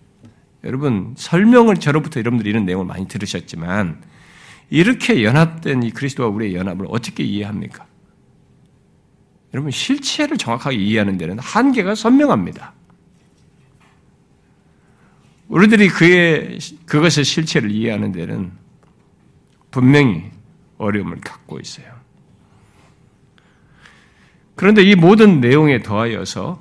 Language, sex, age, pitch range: Korean, male, 50-69, 100-165 Hz